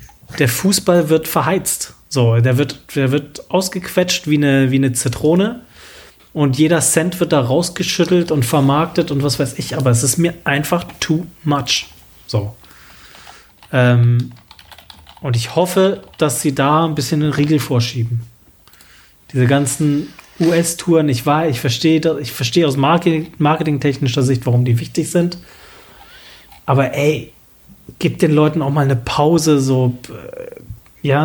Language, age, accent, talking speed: German, 30-49, German, 135 wpm